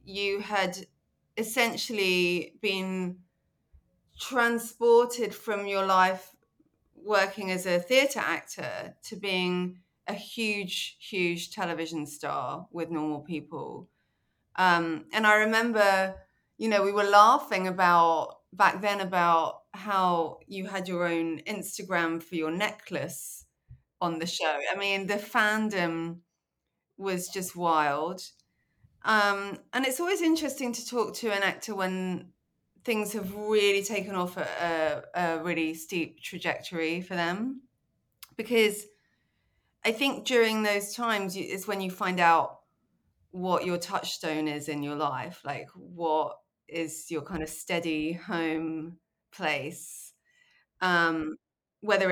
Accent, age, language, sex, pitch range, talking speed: British, 30-49, English, female, 165-205 Hz, 125 wpm